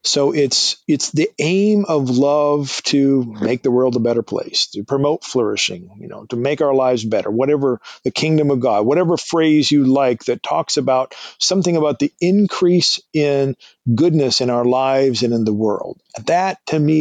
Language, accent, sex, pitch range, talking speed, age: English, American, male, 125-150 Hz, 185 wpm, 50-69